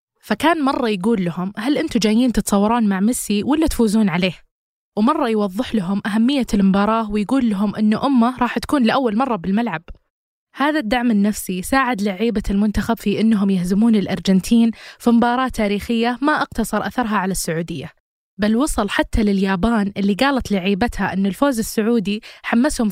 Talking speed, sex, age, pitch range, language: 145 wpm, female, 20-39, 200-235 Hz, Arabic